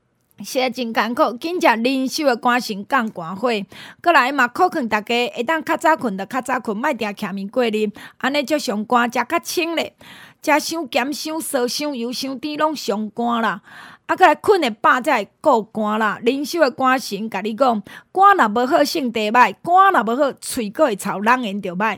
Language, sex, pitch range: Chinese, female, 215-290 Hz